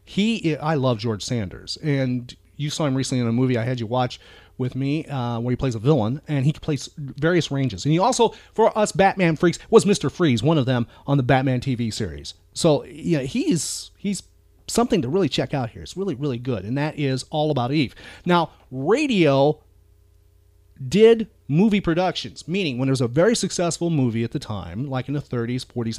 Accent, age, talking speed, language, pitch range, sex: American, 30-49, 205 wpm, English, 120-165 Hz, male